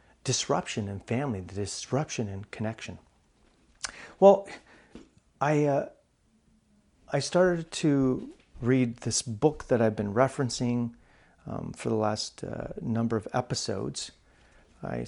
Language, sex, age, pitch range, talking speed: English, male, 40-59, 105-140 Hz, 115 wpm